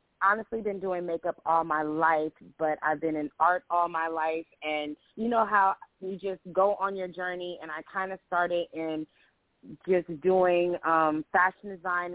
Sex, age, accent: female, 20-39, American